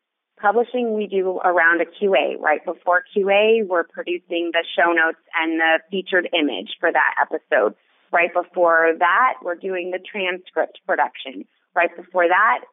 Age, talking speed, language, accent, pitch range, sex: 30-49, 150 wpm, English, American, 165-185 Hz, female